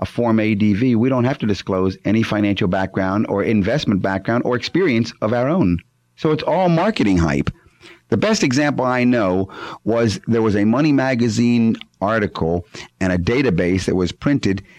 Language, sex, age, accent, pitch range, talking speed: English, male, 50-69, American, 105-150 Hz, 170 wpm